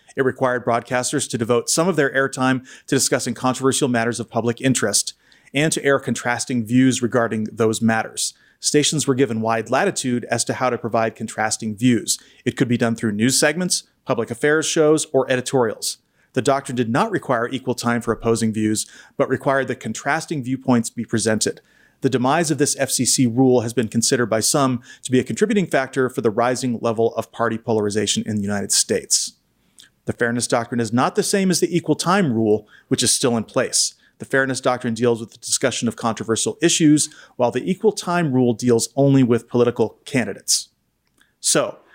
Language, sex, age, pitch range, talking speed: English, male, 30-49, 115-140 Hz, 185 wpm